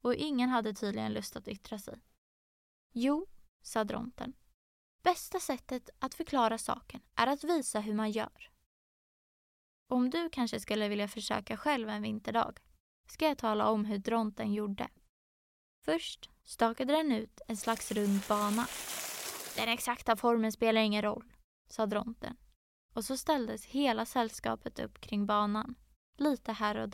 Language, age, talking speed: Swedish, 20-39, 145 wpm